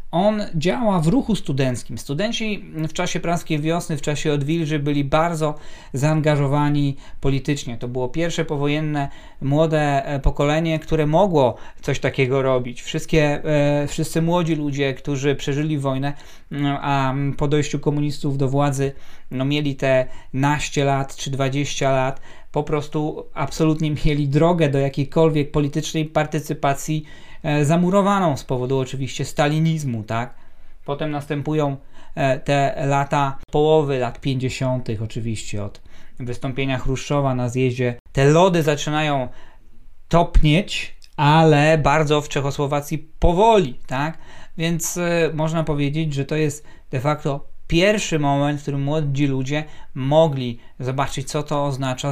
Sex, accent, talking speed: male, native, 120 wpm